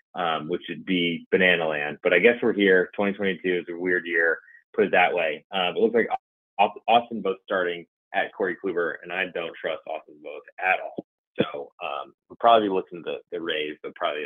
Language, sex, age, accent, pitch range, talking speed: English, male, 30-49, American, 95-115 Hz, 215 wpm